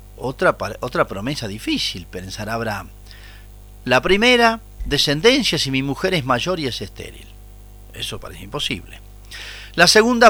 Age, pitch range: 40-59, 105-160 Hz